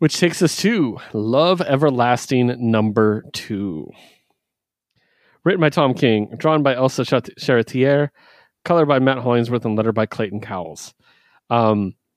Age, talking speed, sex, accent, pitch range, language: 30-49, 130 wpm, male, American, 110-140 Hz, English